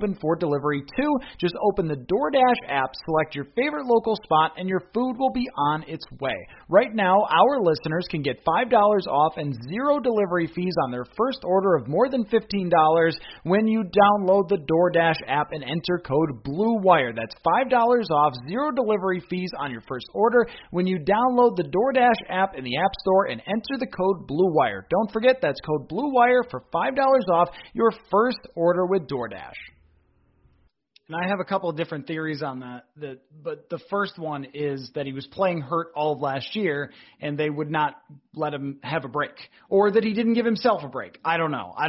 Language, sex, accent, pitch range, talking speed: English, male, American, 150-205 Hz, 195 wpm